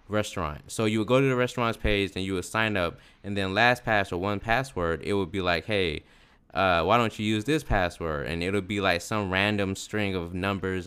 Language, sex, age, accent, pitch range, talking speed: English, male, 20-39, American, 90-120 Hz, 235 wpm